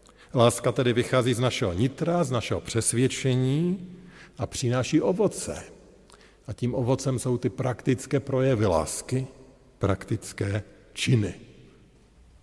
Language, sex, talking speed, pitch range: Slovak, male, 105 wpm, 100-130 Hz